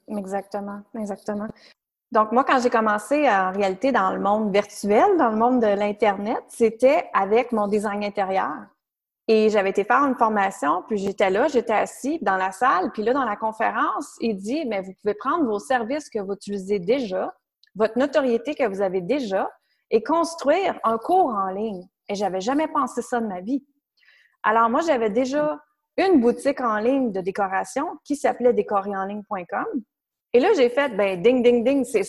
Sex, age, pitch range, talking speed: female, 30-49, 205-280 Hz, 180 wpm